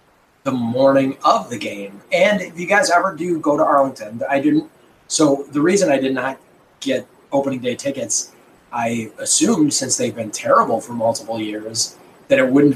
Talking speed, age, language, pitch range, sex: 180 wpm, 20-39, English, 120-155 Hz, male